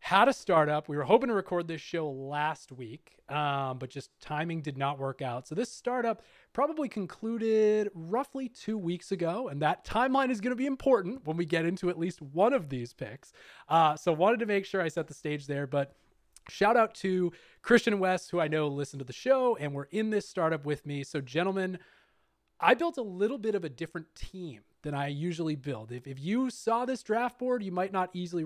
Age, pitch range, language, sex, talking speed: 20-39, 140-210 Hz, English, male, 220 wpm